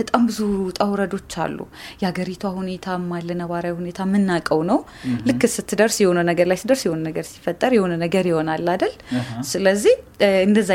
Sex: female